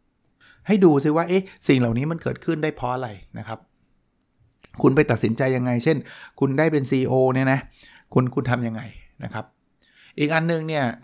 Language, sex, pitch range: Thai, male, 115-140 Hz